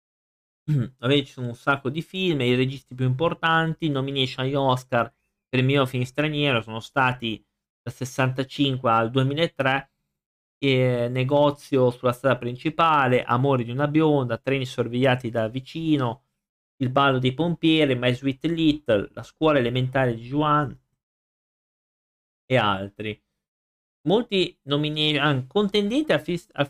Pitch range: 120-150 Hz